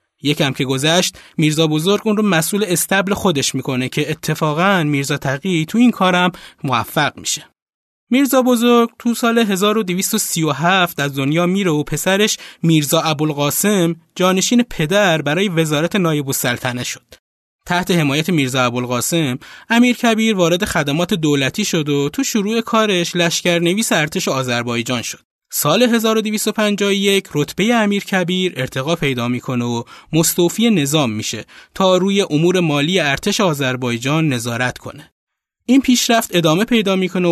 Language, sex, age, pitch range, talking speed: Persian, male, 20-39, 150-210 Hz, 135 wpm